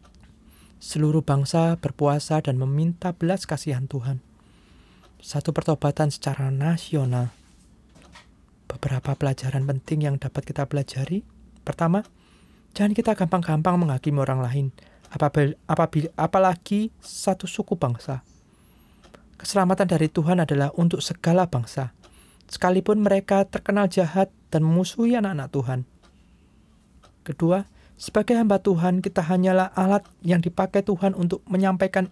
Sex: male